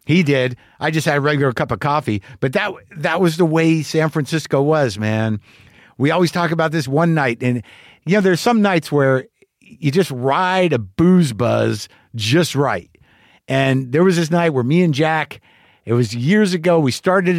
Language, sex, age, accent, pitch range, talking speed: English, male, 50-69, American, 135-175 Hz, 195 wpm